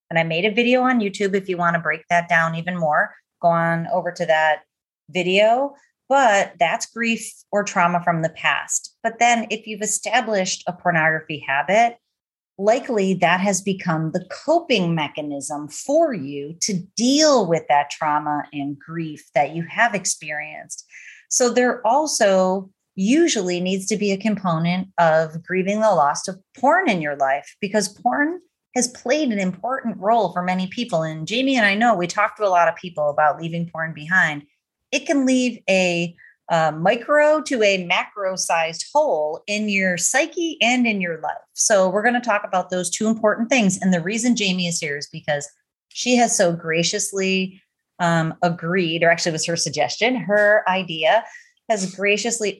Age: 30-49